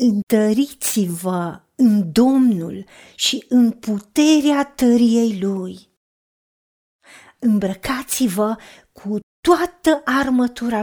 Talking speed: 65 wpm